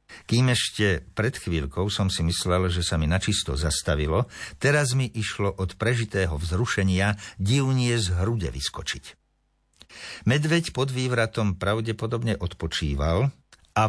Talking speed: 120 wpm